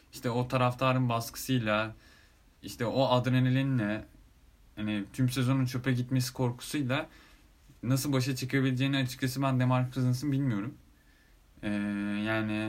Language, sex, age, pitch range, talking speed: Turkish, male, 10-29, 110-140 Hz, 110 wpm